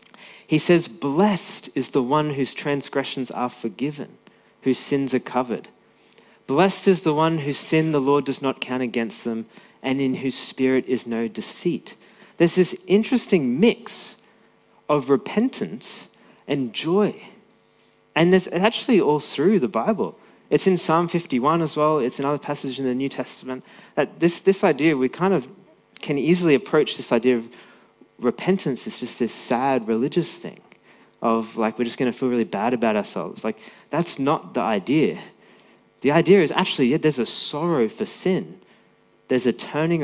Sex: male